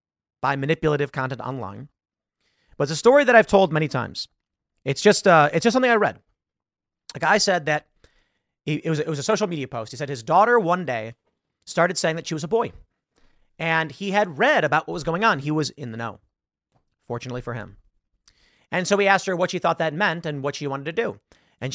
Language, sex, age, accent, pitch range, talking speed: English, male, 30-49, American, 140-190 Hz, 225 wpm